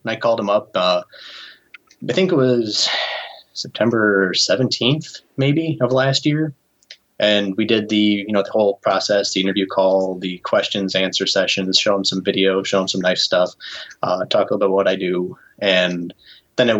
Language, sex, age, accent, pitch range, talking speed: English, male, 20-39, American, 90-105 Hz, 180 wpm